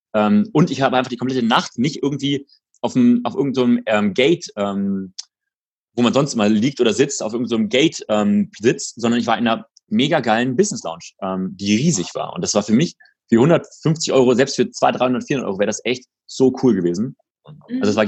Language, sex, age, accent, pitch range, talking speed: German, male, 30-49, German, 115-165 Hz, 210 wpm